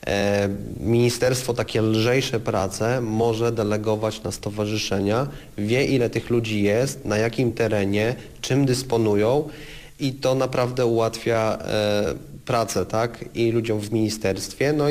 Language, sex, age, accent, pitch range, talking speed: Polish, male, 30-49, native, 110-135 Hz, 115 wpm